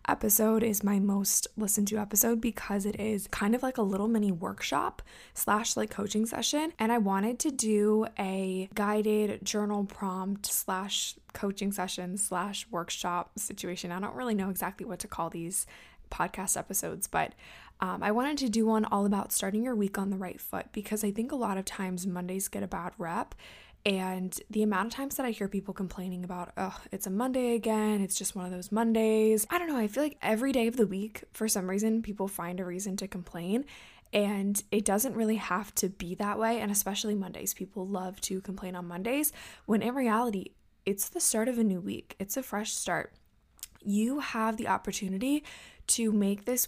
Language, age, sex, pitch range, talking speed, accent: English, 10-29, female, 195-220 Hz, 200 wpm, American